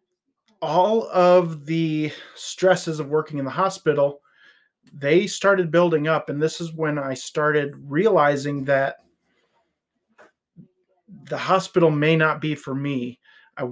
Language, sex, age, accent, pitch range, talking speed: English, male, 30-49, American, 135-165 Hz, 125 wpm